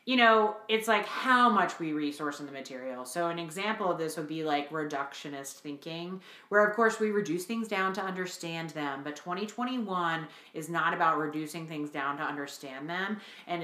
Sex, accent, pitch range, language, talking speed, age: female, American, 155-190 Hz, English, 190 wpm, 30-49